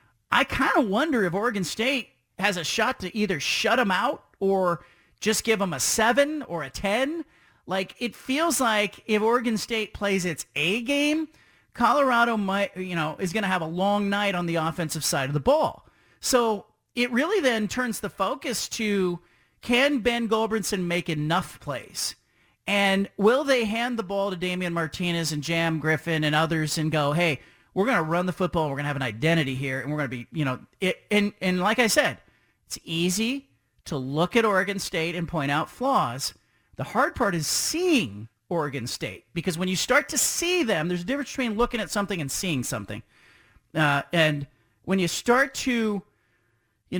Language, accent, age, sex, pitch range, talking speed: English, American, 40-59, male, 155-225 Hz, 195 wpm